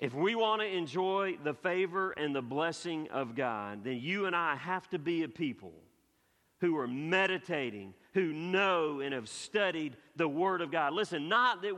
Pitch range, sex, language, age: 100-145 Hz, male, English, 50-69